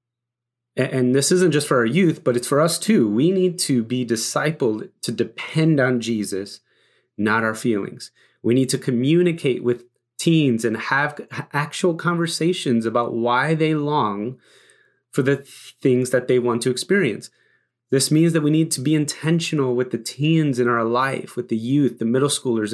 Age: 30-49